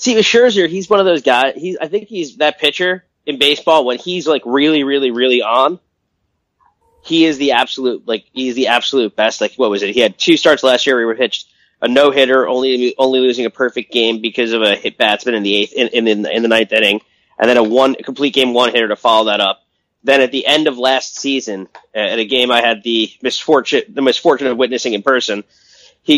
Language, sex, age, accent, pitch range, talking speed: English, male, 20-39, American, 115-150 Hz, 235 wpm